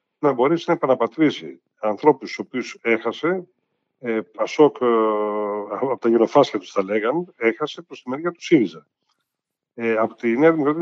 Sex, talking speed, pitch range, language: male, 150 wpm, 110-165 Hz, Greek